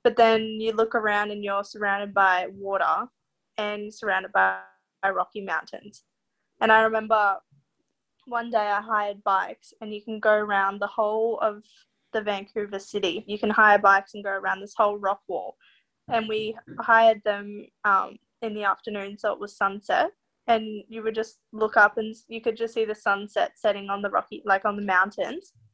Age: 10-29